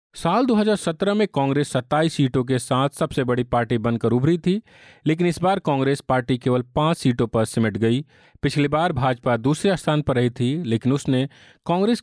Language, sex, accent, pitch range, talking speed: Hindi, male, native, 120-160 Hz, 180 wpm